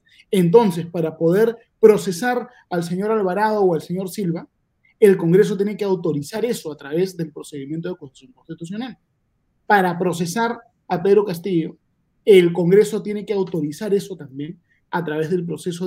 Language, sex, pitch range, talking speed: Spanish, male, 160-205 Hz, 150 wpm